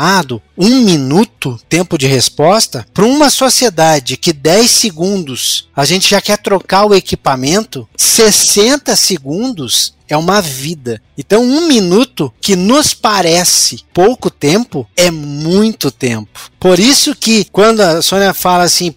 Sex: male